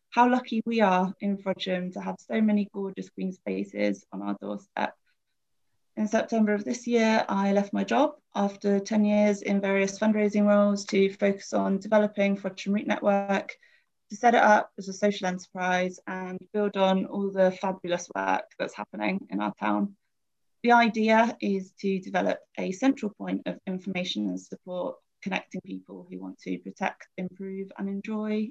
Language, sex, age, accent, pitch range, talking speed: English, female, 20-39, British, 190-215 Hz, 170 wpm